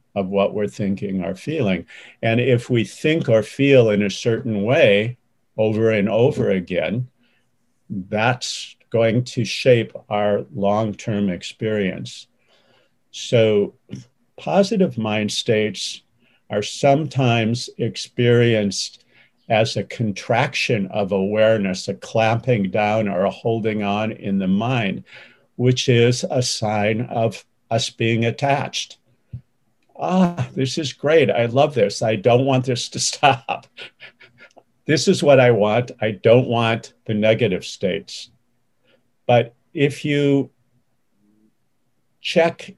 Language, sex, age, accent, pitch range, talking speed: English, male, 50-69, American, 105-130 Hz, 120 wpm